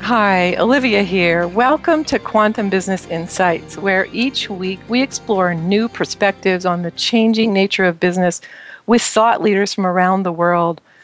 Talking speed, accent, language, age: 150 wpm, American, English, 50-69